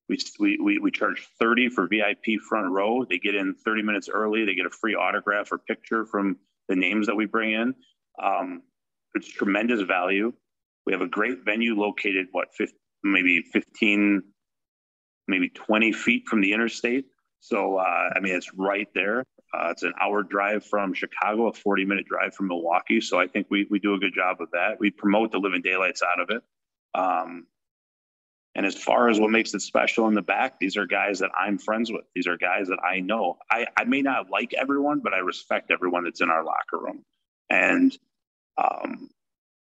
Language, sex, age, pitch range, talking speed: English, male, 30-49, 100-120 Hz, 200 wpm